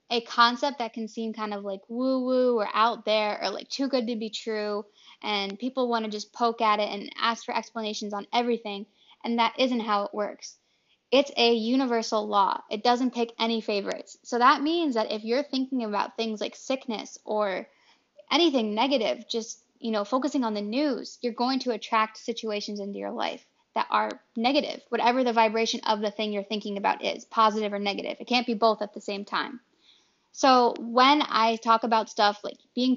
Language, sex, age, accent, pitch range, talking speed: English, female, 10-29, American, 210-245 Hz, 200 wpm